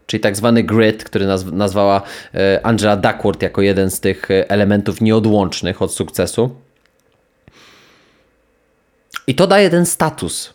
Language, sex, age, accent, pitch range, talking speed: Polish, male, 20-39, native, 100-140 Hz, 120 wpm